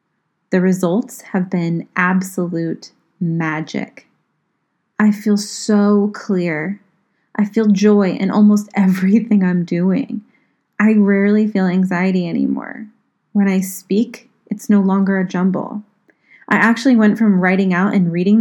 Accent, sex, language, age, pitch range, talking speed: American, female, English, 30-49, 185-215 Hz, 125 wpm